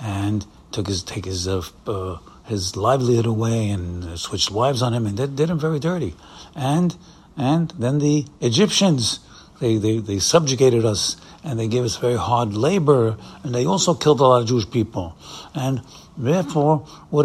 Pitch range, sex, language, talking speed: 110-150 Hz, male, English, 175 wpm